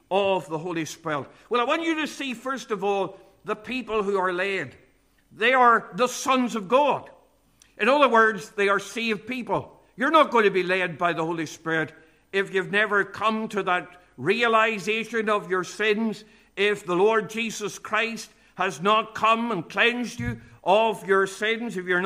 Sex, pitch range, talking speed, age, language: male, 195-245 Hz, 180 wpm, 60-79, English